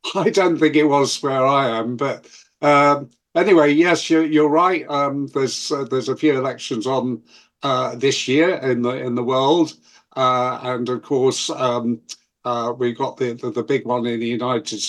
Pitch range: 120-150 Hz